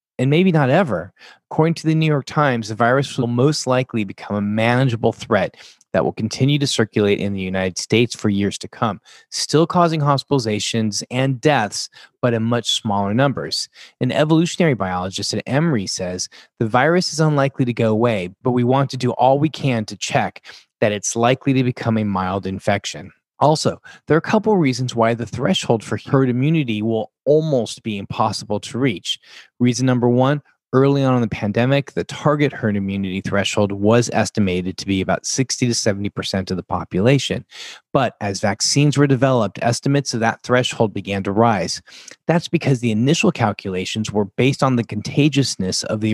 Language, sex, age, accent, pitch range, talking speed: English, male, 30-49, American, 105-140 Hz, 180 wpm